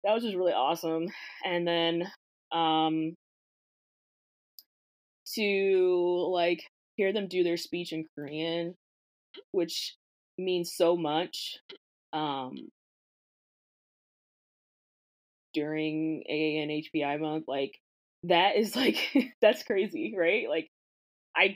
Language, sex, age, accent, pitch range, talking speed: English, female, 20-39, American, 150-180 Hz, 95 wpm